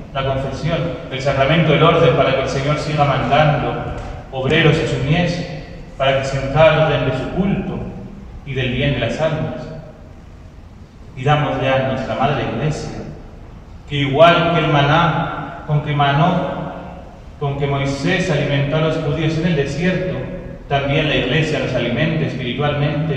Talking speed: 155 wpm